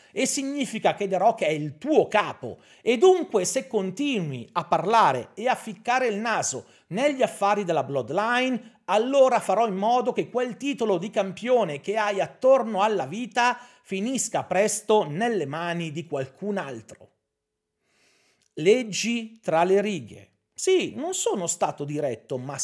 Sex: male